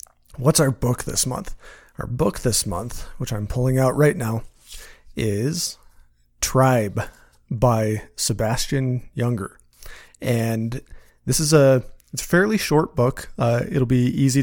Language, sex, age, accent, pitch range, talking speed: English, male, 30-49, American, 115-135 Hz, 135 wpm